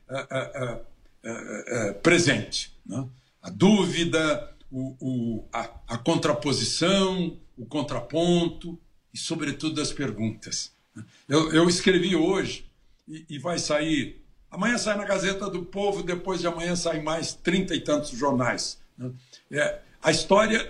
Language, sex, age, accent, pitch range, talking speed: English, male, 60-79, Brazilian, 140-175 Hz, 140 wpm